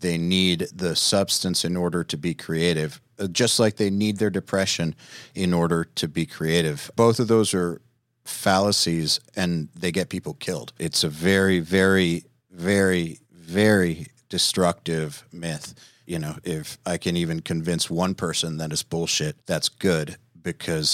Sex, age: male, 40-59